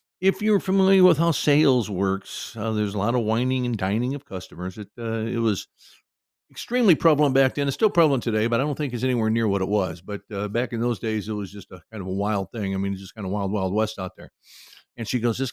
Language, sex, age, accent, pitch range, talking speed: English, male, 50-69, American, 100-145 Hz, 265 wpm